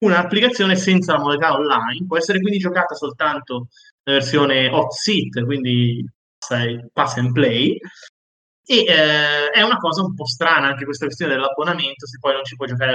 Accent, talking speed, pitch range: native, 165 wpm, 130-165 Hz